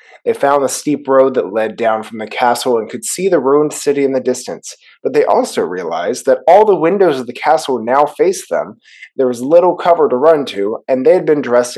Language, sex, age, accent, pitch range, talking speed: English, male, 30-49, American, 120-165 Hz, 235 wpm